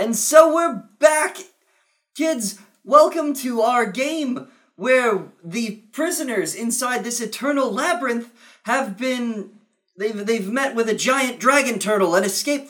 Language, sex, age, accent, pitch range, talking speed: English, male, 30-49, American, 195-270 Hz, 130 wpm